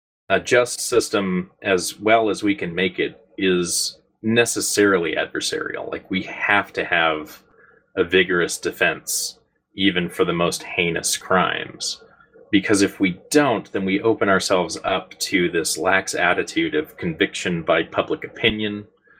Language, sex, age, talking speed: English, male, 30-49, 140 wpm